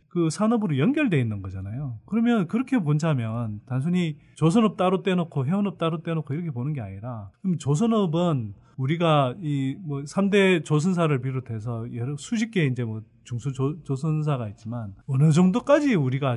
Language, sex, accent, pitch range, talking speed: English, male, Korean, 135-200 Hz, 140 wpm